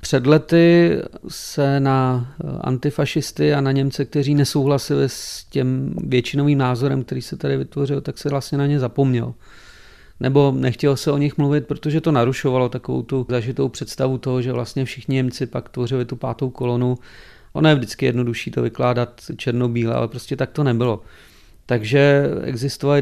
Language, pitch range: Czech, 125-140 Hz